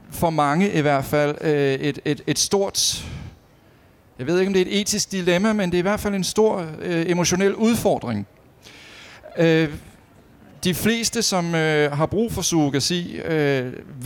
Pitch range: 130-175 Hz